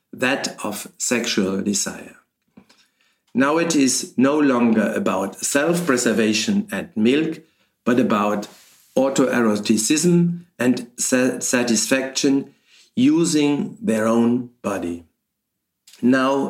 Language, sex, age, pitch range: English, male, 50-69, 115-165 Hz